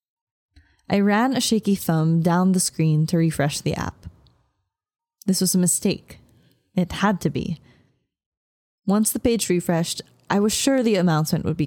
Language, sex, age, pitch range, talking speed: English, female, 10-29, 150-195 Hz, 160 wpm